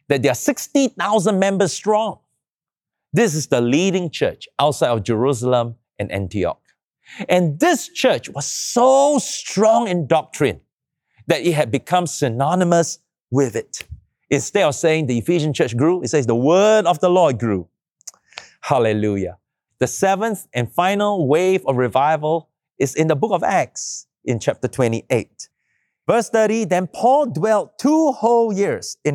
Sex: male